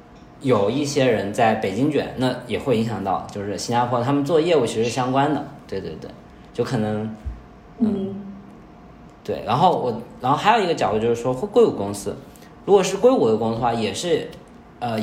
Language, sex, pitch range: Chinese, male, 100-135 Hz